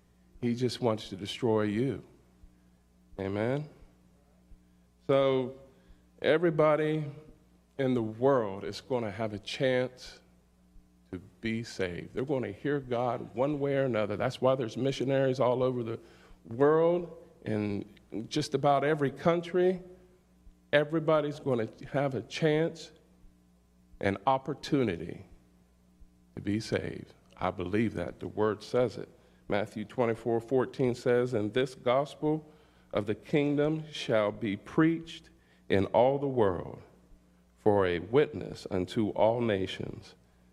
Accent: American